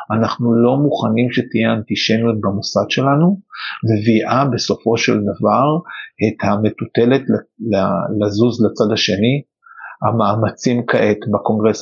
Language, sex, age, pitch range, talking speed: Hebrew, male, 50-69, 105-120 Hz, 95 wpm